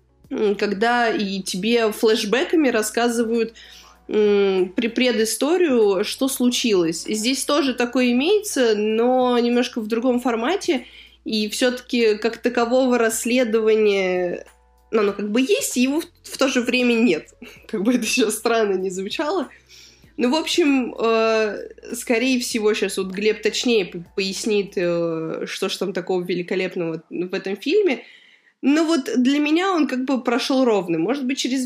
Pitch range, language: 210-255 Hz, Russian